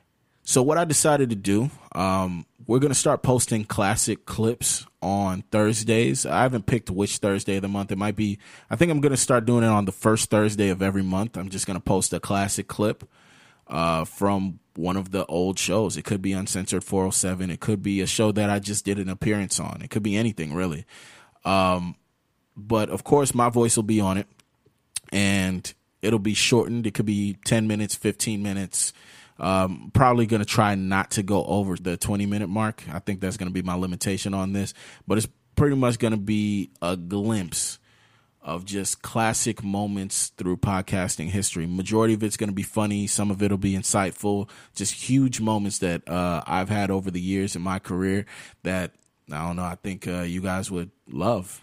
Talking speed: 205 wpm